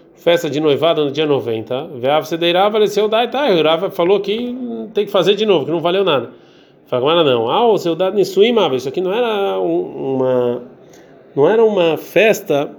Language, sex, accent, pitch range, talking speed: Portuguese, male, Brazilian, 140-180 Hz, 190 wpm